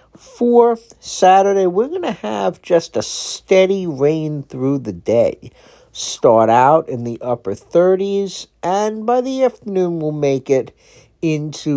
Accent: American